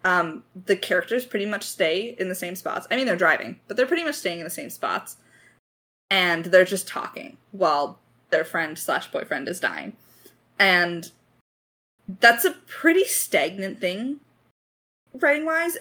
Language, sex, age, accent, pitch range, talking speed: English, female, 20-39, American, 165-215 Hz, 155 wpm